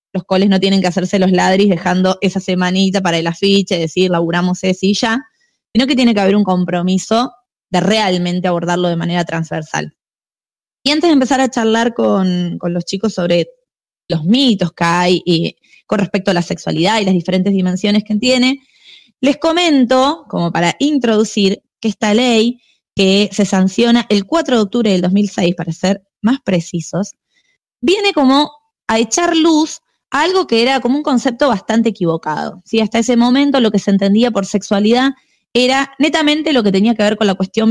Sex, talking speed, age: female, 180 wpm, 20-39